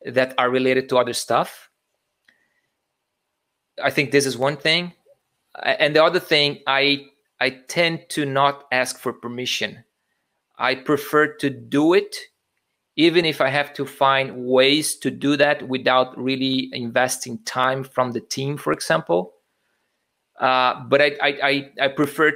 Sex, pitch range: male, 130-155 Hz